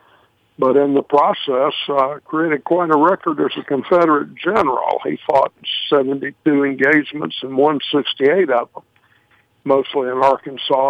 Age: 60-79